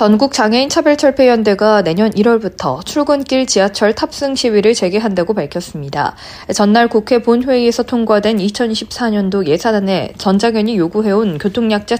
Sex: female